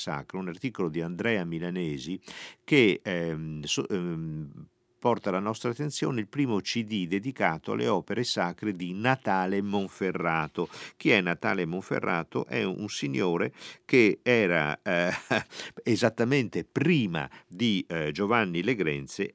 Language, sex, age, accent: Italian, male, 50-69, native